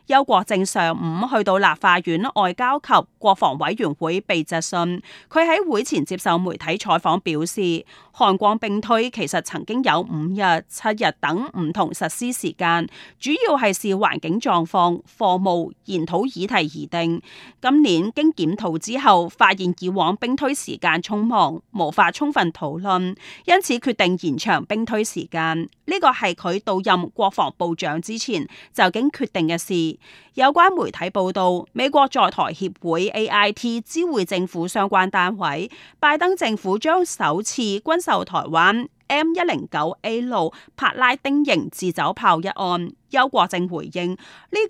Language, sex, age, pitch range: Chinese, female, 30-49, 170-245 Hz